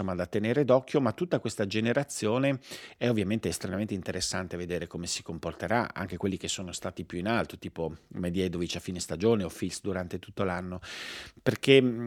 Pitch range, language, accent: 90-110 Hz, Italian, native